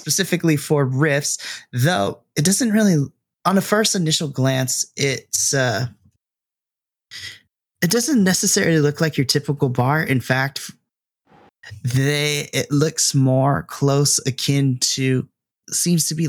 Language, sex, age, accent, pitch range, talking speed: English, male, 20-39, American, 130-160 Hz, 125 wpm